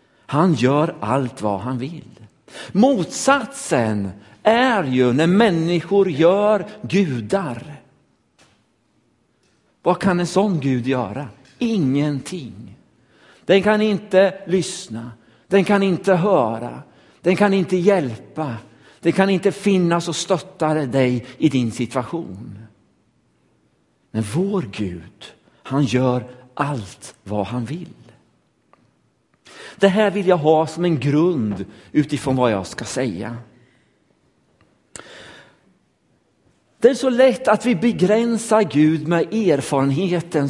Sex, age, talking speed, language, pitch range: male, 60-79, 110 wpm, Swedish, 130-210 Hz